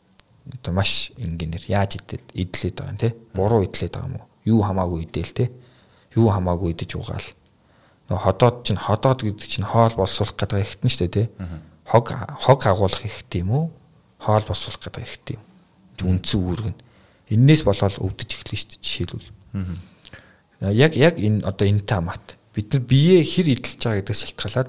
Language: English